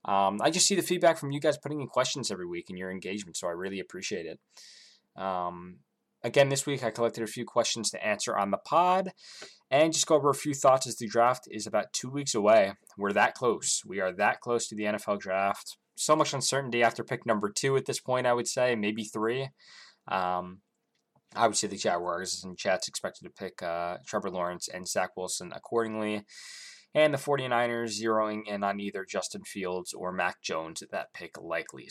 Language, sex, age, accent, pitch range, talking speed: English, male, 20-39, American, 100-130 Hz, 205 wpm